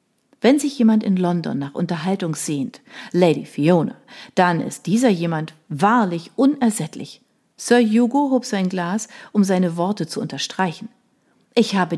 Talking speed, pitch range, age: 140 wpm, 170-235 Hz, 40-59